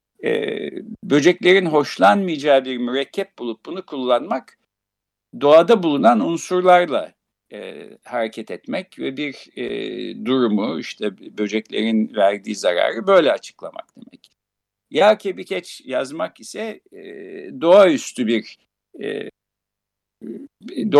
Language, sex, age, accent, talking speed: Turkish, male, 60-79, native, 95 wpm